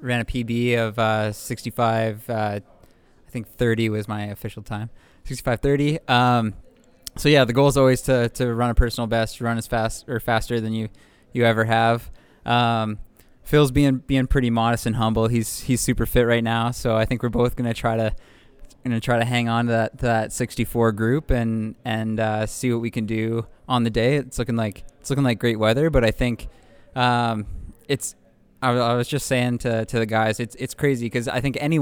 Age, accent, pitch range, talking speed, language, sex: 20-39, American, 110-125 Hz, 205 wpm, English, male